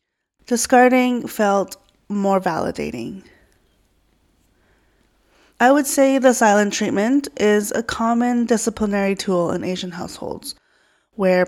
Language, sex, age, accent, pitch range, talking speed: English, female, 20-39, American, 185-220 Hz, 100 wpm